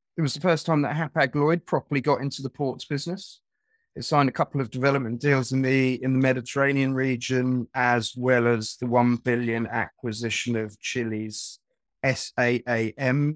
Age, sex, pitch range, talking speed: 30-49, male, 125-165 Hz, 160 wpm